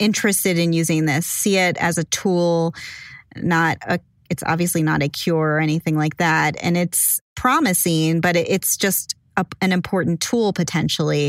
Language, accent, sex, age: English, American, female, 10-29